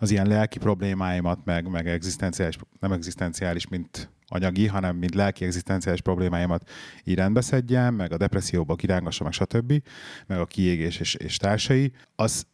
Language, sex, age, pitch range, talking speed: Hungarian, male, 30-49, 90-110 Hz, 140 wpm